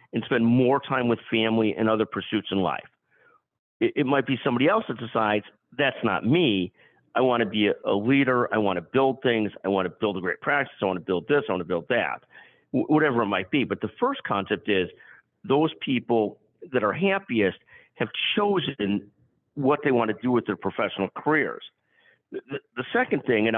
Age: 50-69